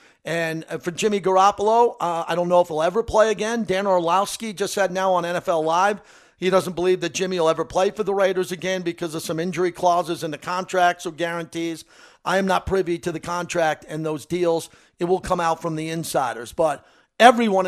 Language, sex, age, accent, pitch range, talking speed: English, male, 50-69, American, 170-205 Hz, 210 wpm